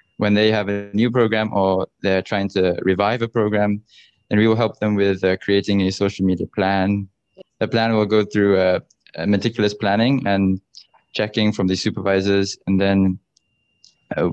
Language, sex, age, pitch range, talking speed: English, male, 20-39, 95-105 Hz, 175 wpm